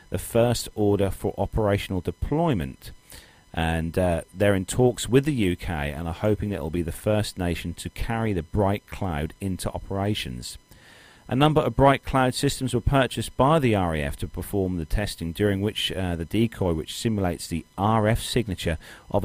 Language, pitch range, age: English, 85-110 Hz, 40-59